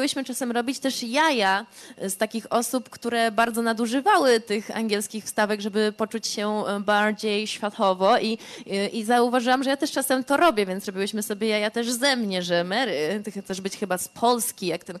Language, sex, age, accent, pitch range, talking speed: Polish, female, 20-39, native, 205-245 Hz, 180 wpm